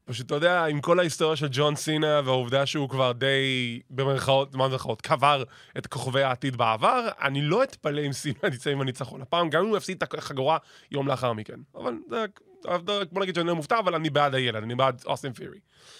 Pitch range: 135-180 Hz